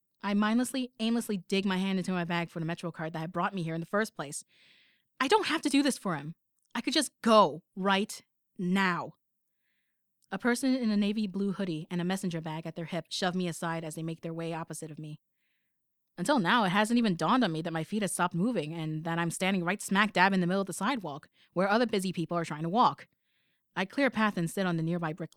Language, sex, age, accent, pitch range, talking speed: English, female, 20-39, American, 165-225 Hz, 250 wpm